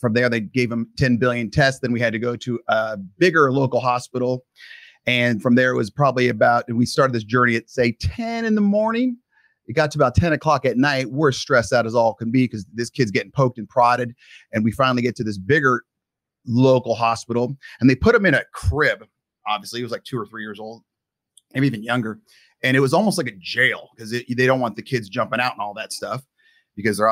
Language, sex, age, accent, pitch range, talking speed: English, male, 30-49, American, 115-135 Hz, 235 wpm